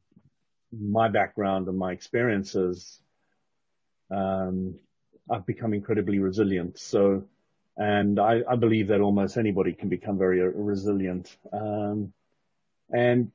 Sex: male